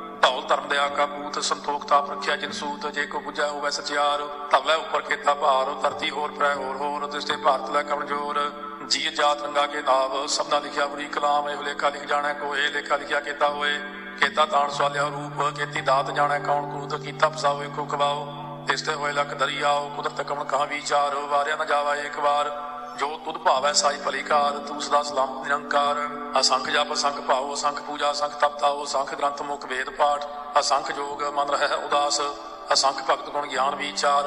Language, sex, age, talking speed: Punjabi, male, 40-59, 180 wpm